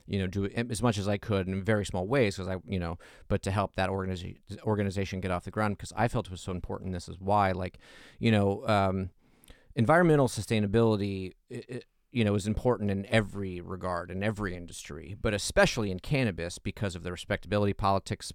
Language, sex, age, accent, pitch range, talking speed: English, male, 30-49, American, 90-105 Hz, 215 wpm